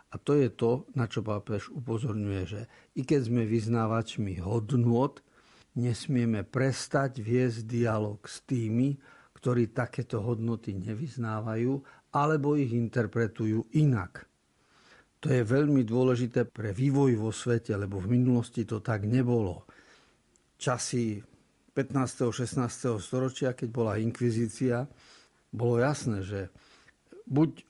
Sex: male